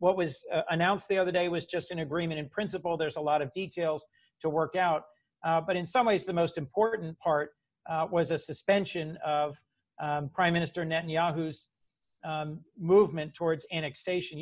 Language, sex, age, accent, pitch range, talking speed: English, male, 50-69, American, 150-175 Hz, 175 wpm